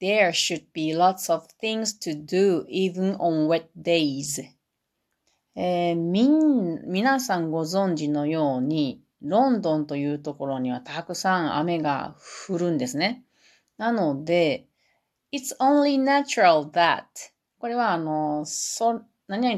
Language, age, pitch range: Japanese, 30-49, 155-215 Hz